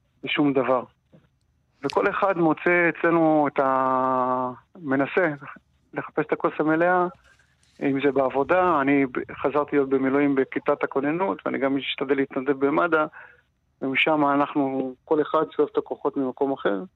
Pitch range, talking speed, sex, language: 135-155 Hz, 125 wpm, male, Hebrew